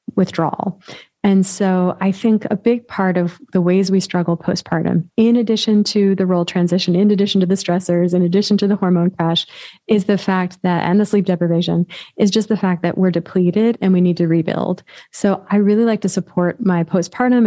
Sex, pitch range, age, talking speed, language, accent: female, 175-195 Hz, 30-49, 205 wpm, English, American